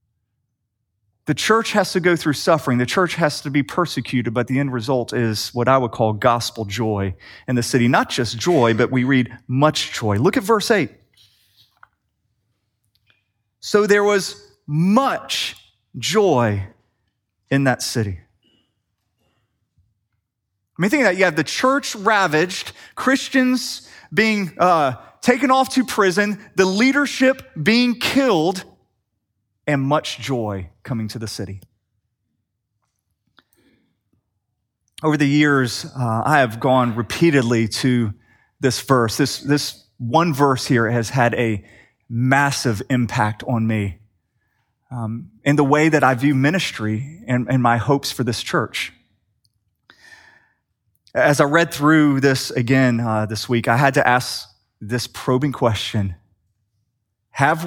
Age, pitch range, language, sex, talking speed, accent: 30-49, 110-150 Hz, English, male, 135 wpm, American